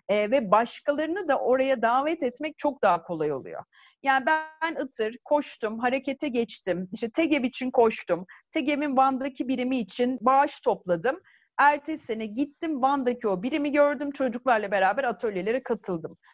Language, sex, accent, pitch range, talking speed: Turkish, female, native, 220-295 Hz, 145 wpm